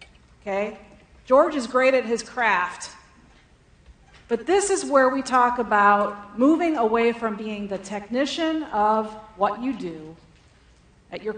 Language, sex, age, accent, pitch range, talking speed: English, female, 40-59, American, 200-250 Hz, 135 wpm